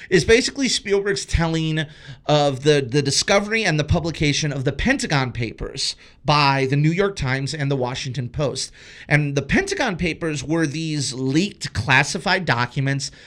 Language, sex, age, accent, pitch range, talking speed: English, male, 30-49, American, 135-175 Hz, 150 wpm